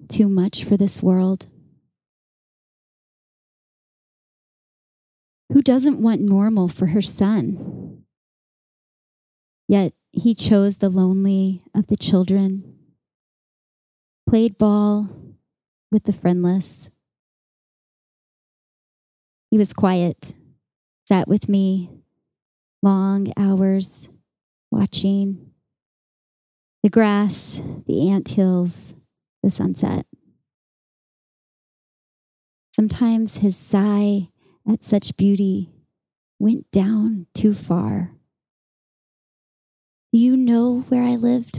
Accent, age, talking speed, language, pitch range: American, 30-49, 80 wpm, English, 185-210 Hz